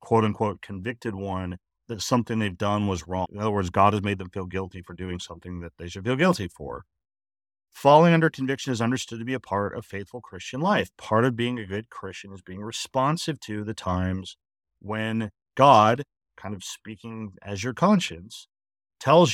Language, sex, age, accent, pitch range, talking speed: English, male, 40-59, American, 100-125 Hz, 190 wpm